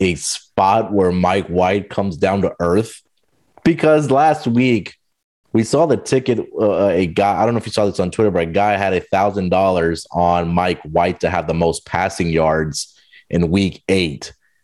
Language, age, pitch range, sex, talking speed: English, 30-49, 90-115 Hz, male, 195 wpm